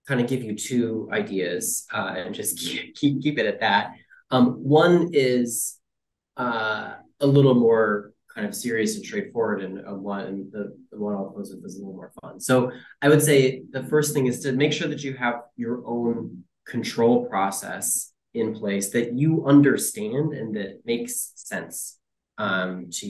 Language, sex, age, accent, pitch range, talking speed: English, male, 20-39, American, 110-140 Hz, 180 wpm